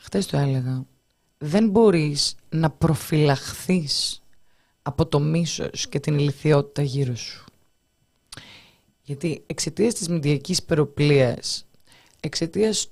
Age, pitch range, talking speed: 20-39, 140-185 Hz, 100 wpm